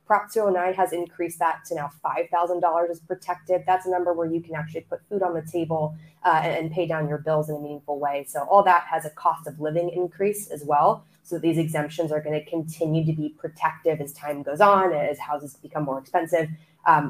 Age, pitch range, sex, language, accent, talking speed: 20-39, 160-190 Hz, female, English, American, 220 wpm